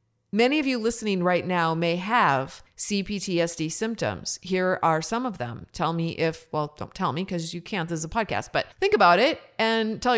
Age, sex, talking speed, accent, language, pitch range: 30-49, female, 205 wpm, American, English, 165-220 Hz